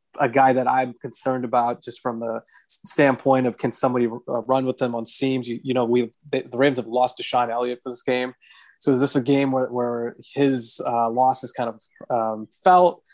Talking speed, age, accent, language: 215 wpm, 20-39, American, English